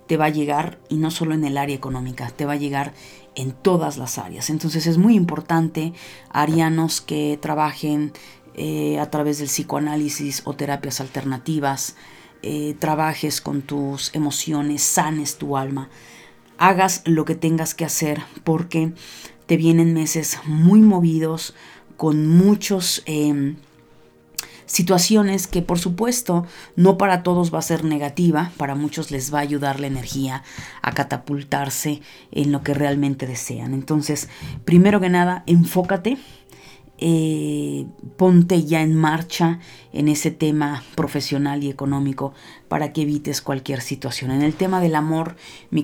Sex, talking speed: female, 145 wpm